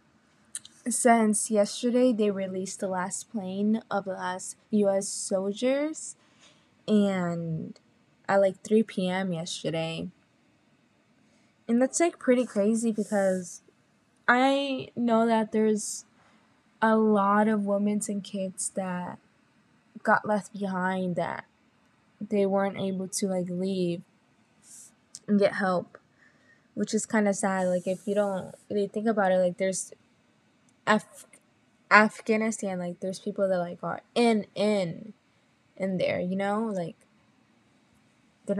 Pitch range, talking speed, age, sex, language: 185-220 Hz, 120 wpm, 20-39, female, English